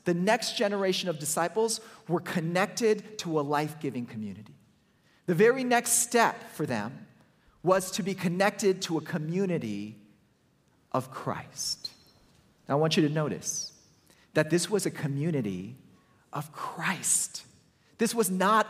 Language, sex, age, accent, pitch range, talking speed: English, male, 40-59, American, 150-215 Hz, 130 wpm